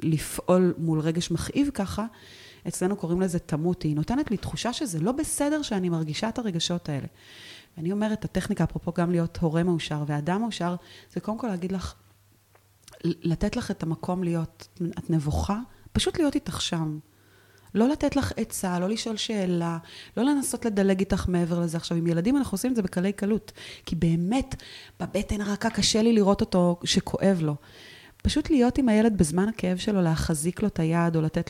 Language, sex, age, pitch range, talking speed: Hebrew, female, 30-49, 160-200 Hz, 170 wpm